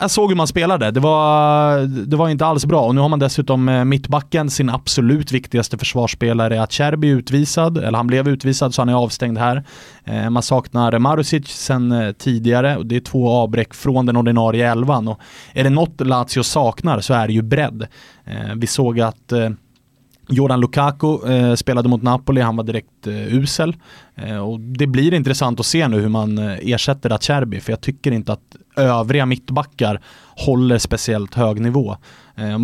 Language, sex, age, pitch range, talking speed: English, male, 20-39, 110-135 Hz, 170 wpm